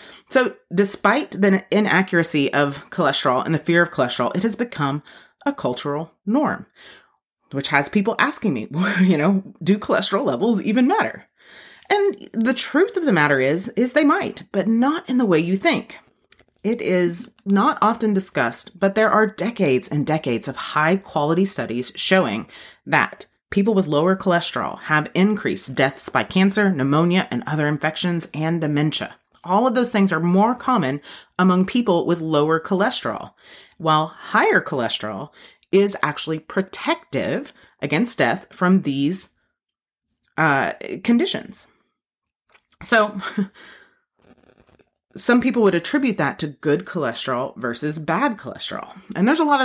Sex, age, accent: female, 30-49, American